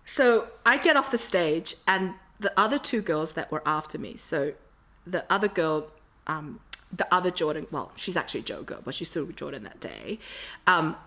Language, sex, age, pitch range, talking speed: English, female, 30-49, 170-255 Hz, 200 wpm